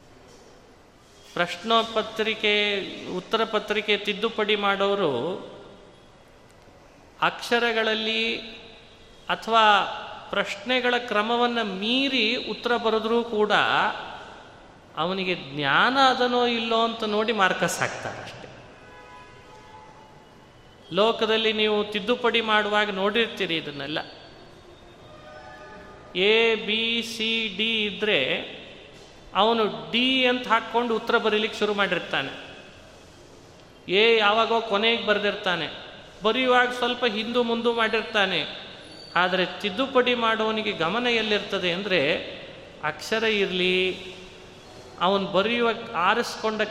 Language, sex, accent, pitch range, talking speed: Kannada, male, native, 185-225 Hz, 75 wpm